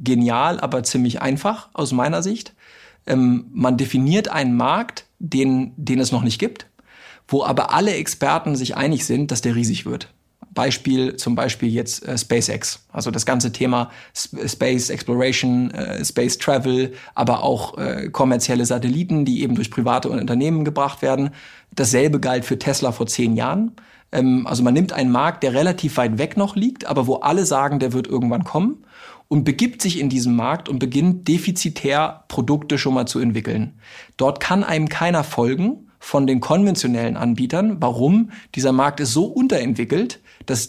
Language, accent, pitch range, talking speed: German, German, 125-165 Hz, 170 wpm